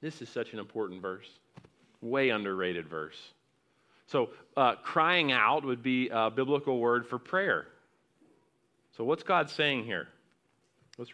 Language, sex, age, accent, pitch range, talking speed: English, male, 40-59, American, 135-180 Hz, 140 wpm